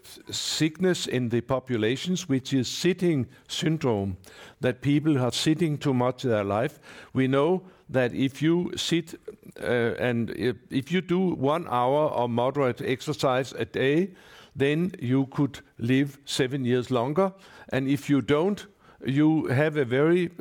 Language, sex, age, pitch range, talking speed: English, male, 60-79, 125-155 Hz, 150 wpm